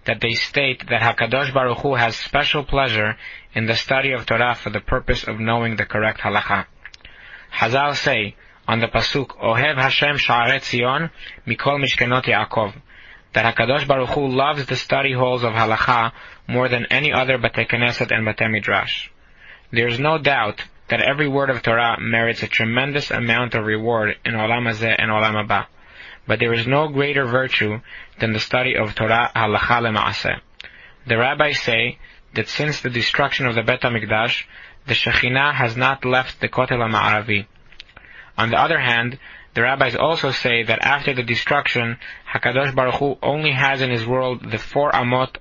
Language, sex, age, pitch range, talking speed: English, male, 20-39, 115-135 Hz, 170 wpm